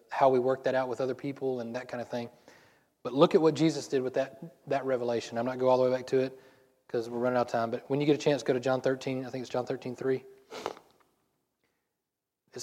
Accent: American